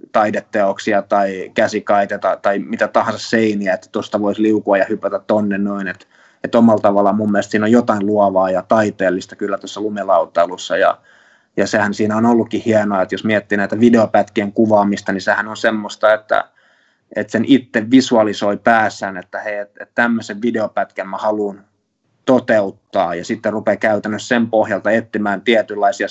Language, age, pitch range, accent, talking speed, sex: Finnish, 20-39, 100-110 Hz, native, 160 wpm, male